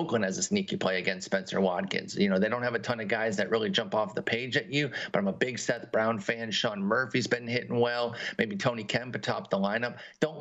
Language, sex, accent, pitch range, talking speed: English, male, American, 110-135 Hz, 255 wpm